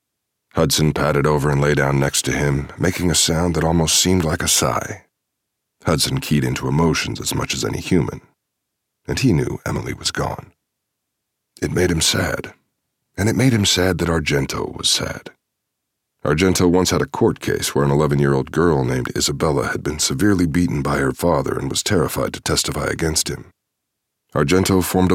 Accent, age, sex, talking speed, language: American, 40-59, male, 175 wpm, English